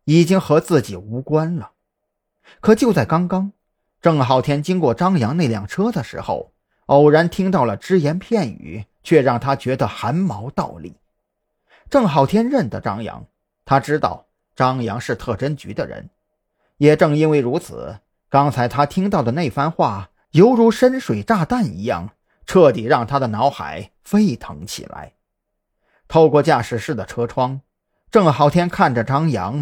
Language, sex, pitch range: Chinese, male, 120-165 Hz